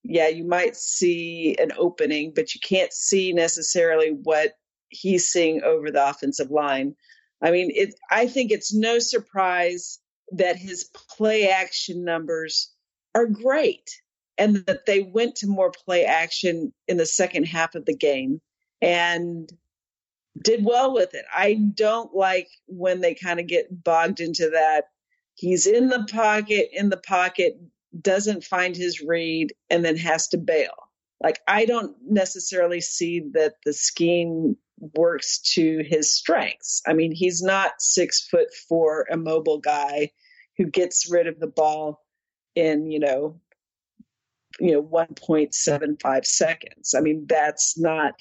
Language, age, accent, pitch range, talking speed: English, 50-69, American, 160-210 Hz, 150 wpm